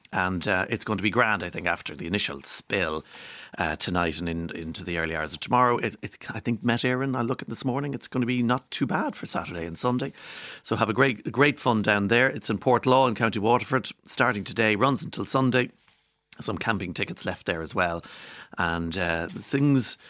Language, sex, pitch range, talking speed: English, male, 90-130 Hz, 225 wpm